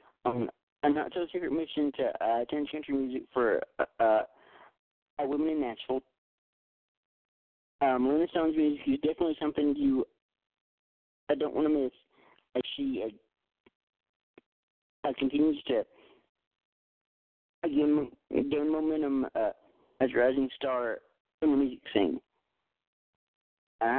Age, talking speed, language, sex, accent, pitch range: 40-59, 125 wpm, English, male, American, 130-160 Hz